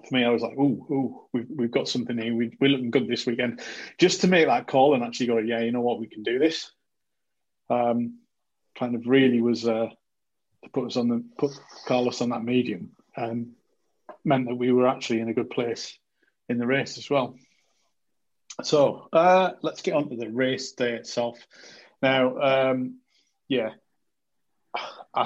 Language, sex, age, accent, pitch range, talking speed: English, male, 30-49, British, 120-140 Hz, 190 wpm